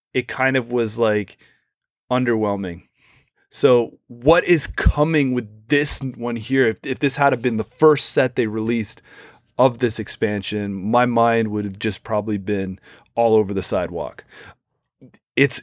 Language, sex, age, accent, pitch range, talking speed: English, male, 30-49, American, 110-140 Hz, 150 wpm